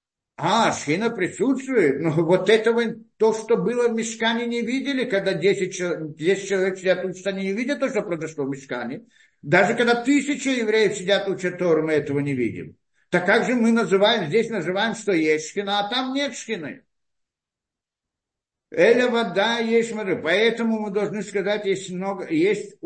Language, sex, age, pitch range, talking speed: Russian, male, 60-79, 160-225 Hz, 170 wpm